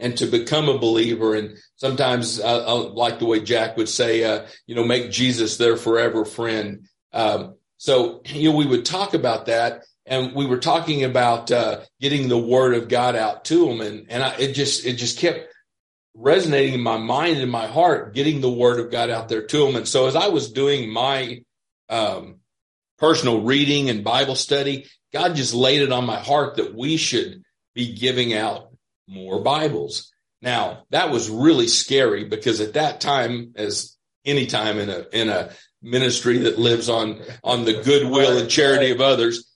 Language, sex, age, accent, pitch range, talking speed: English, male, 40-59, American, 115-145 Hz, 190 wpm